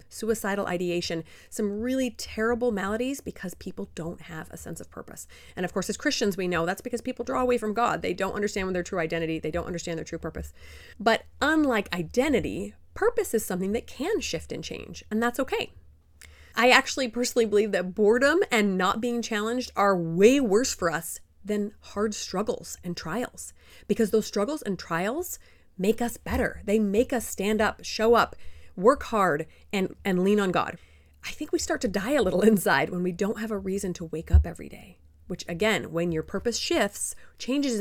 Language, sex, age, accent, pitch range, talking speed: English, female, 30-49, American, 165-235 Hz, 195 wpm